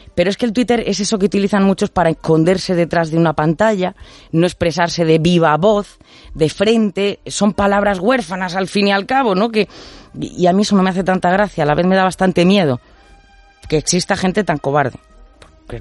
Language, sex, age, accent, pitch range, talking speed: Spanish, female, 30-49, Spanish, 145-190 Hz, 210 wpm